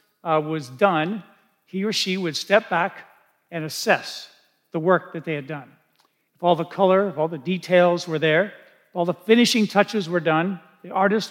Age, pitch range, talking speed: 50-69, 165-205 Hz, 190 wpm